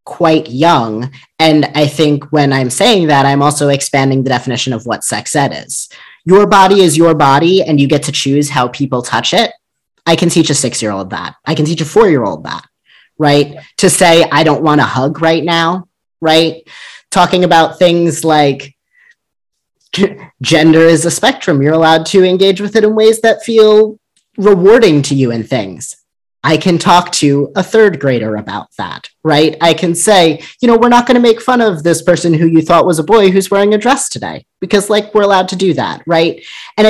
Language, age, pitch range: English, 30-49, 145-185 Hz